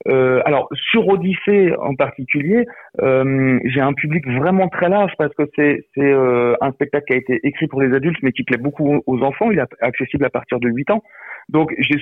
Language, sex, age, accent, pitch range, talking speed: French, male, 40-59, French, 130-185 Hz, 215 wpm